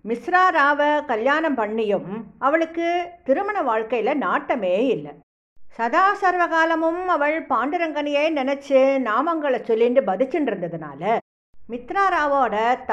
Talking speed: 110 wpm